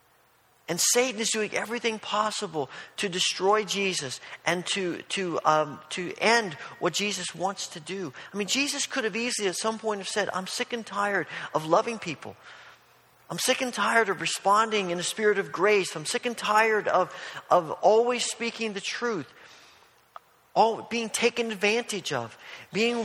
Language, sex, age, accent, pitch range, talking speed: English, male, 40-59, American, 180-225 Hz, 170 wpm